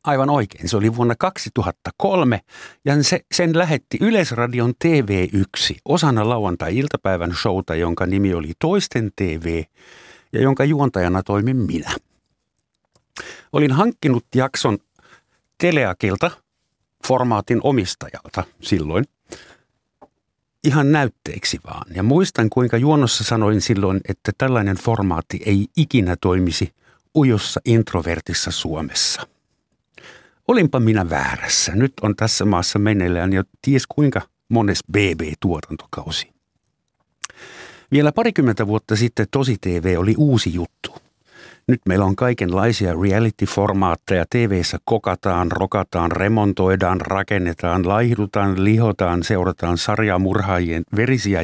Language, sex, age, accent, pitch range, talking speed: Finnish, male, 50-69, native, 95-130 Hz, 100 wpm